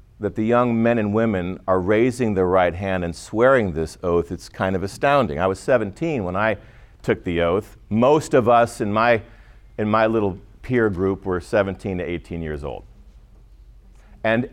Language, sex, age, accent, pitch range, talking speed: English, male, 50-69, American, 90-120 Hz, 180 wpm